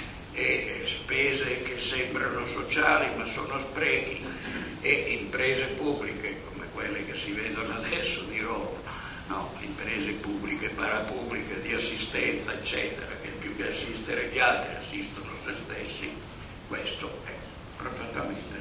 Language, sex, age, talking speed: Italian, male, 60-79, 125 wpm